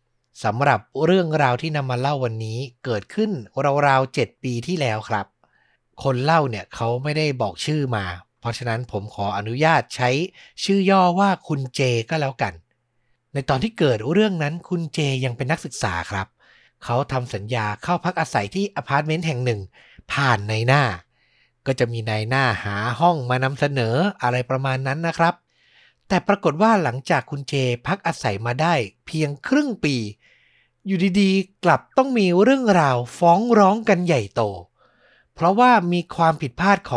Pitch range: 120-170 Hz